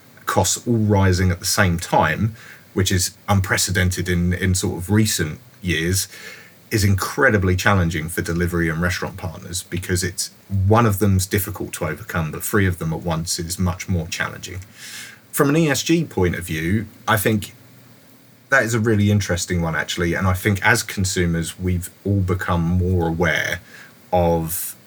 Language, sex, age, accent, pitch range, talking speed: English, male, 30-49, British, 90-110 Hz, 165 wpm